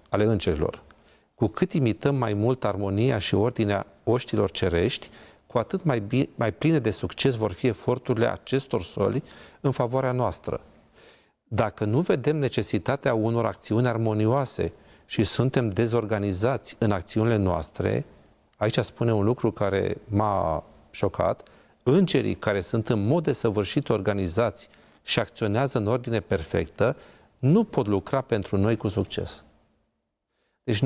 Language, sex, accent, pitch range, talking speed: Romanian, male, native, 105-135 Hz, 130 wpm